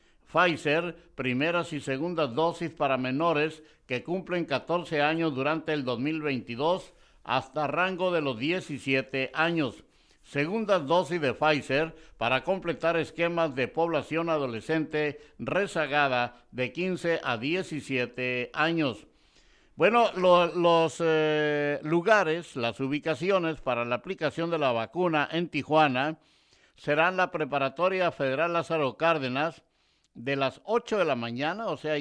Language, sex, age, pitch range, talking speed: Spanish, male, 60-79, 135-170 Hz, 120 wpm